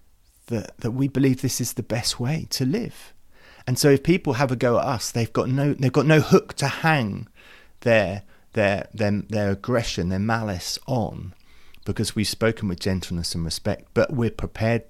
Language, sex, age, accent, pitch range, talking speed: English, male, 30-49, British, 105-140 Hz, 190 wpm